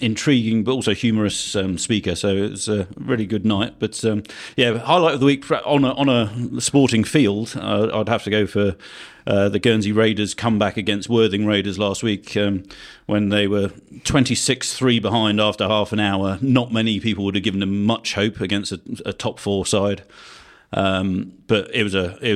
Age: 40-59